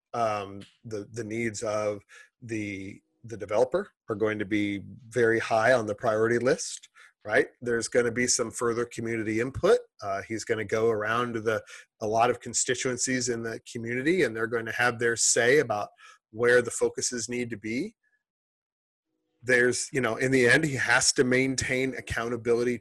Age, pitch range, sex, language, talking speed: 30-49, 110-145 Hz, male, English, 175 wpm